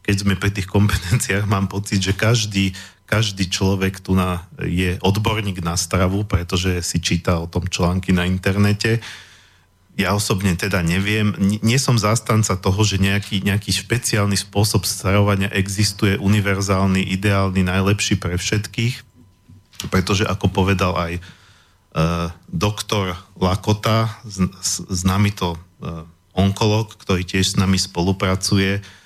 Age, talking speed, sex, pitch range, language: 40-59, 130 wpm, male, 90-105 Hz, Slovak